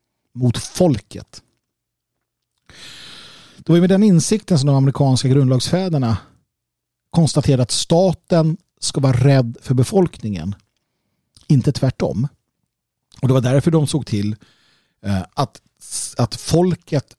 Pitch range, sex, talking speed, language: 115-155 Hz, male, 110 wpm, Swedish